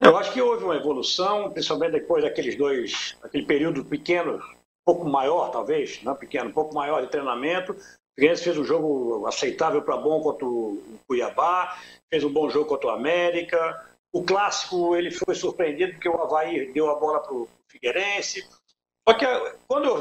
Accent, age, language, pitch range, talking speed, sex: Brazilian, 60-79, Portuguese, 170-285 Hz, 180 wpm, male